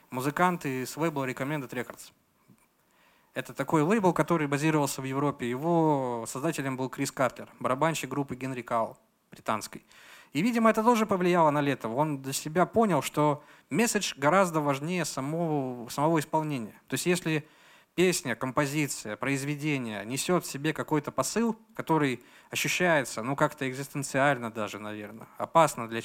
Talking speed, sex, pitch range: 140 wpm, male, 130-165 Hz